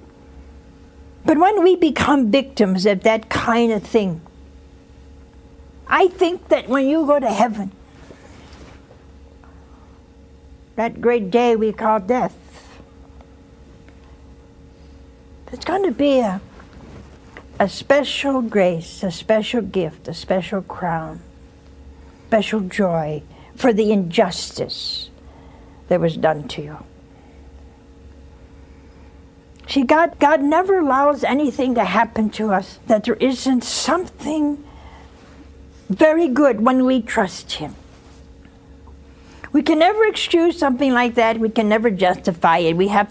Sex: female